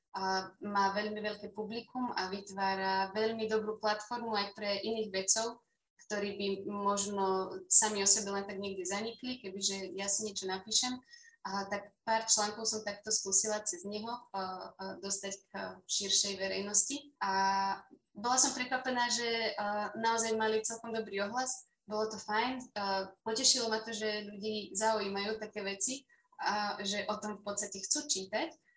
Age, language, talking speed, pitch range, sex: 20-39, Slovak, 150 wpm, 195-225 Hz, female